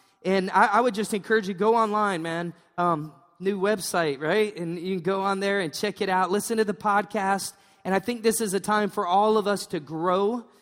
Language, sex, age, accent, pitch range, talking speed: English, male, 20-39, American, 185-215 Hz, 230 wpm